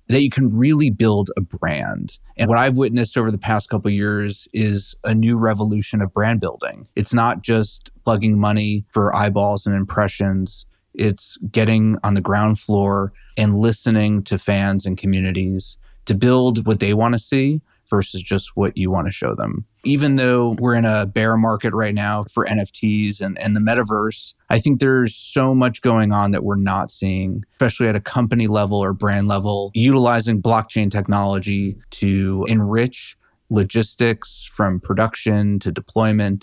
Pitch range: 100-115 Hz